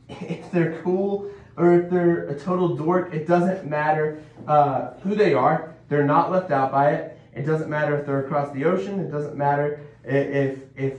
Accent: American